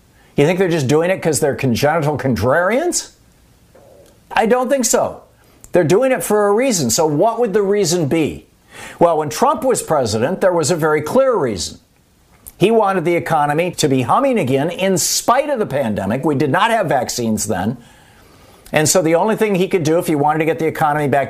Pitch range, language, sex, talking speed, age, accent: 135-200 Hz, English, male, 205 wpm, 50-69, American